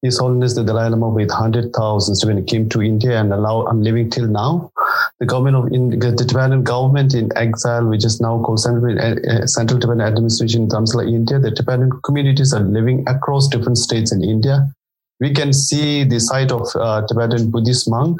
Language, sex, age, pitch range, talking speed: English, male, 30-49, 115-130 Hz, 190 wpm